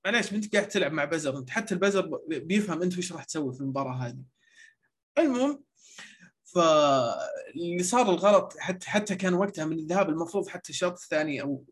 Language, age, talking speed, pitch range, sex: Arabic, 20-39, 170 wpm, 155-195 Hz, male